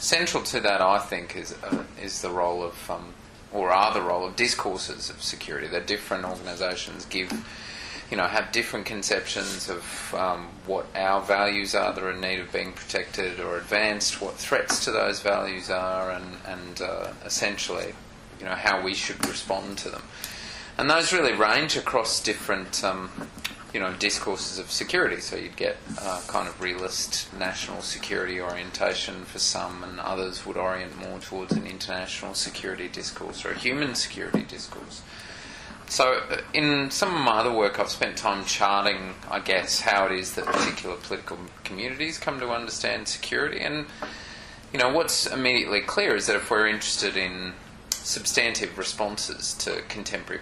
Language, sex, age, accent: English, male, 30-49, Australian